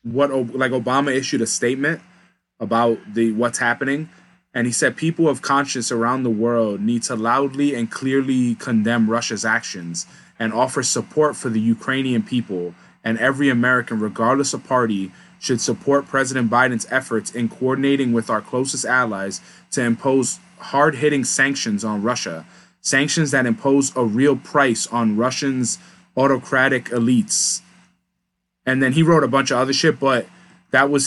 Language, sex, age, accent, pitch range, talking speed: English, male, 20-39, American, 120-150 Hz, 155 wpm